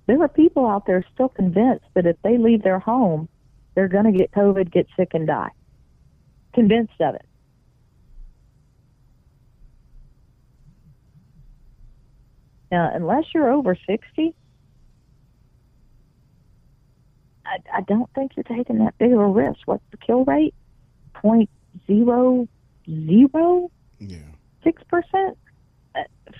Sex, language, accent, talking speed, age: female, English, American, 105 wpm, 40-59